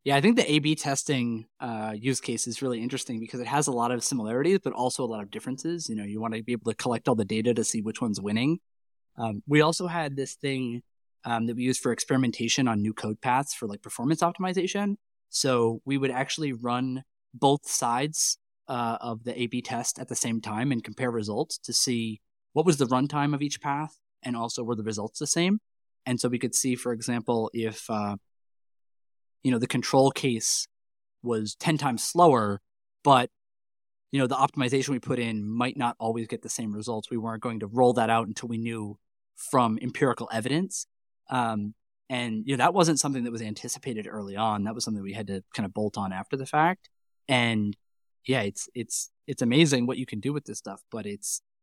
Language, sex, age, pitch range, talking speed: English, male, 20-39, 110-140 Hz, 215 wpm